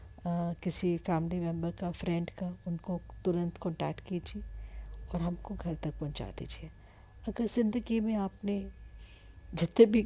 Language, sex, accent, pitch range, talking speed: Hindi, female, native, 160-195 Hz, 130 wpm